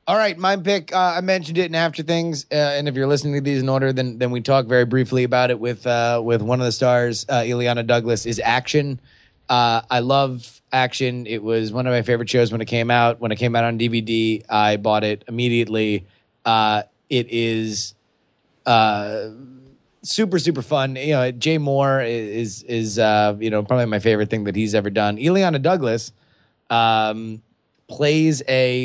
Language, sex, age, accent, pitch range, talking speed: English, male, 20-39, American, 110-130 Hz, 200 wpm